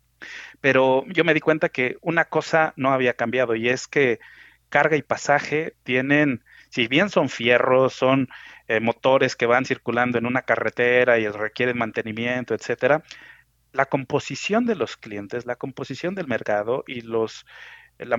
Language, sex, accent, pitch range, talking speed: Spanish, male, Mexican, 120-140 Hz, 155 wpm